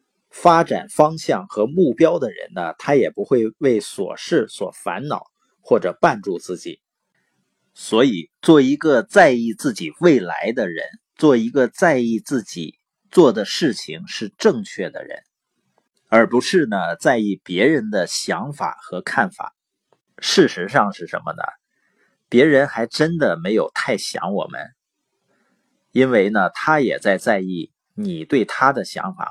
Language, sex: Chinese, male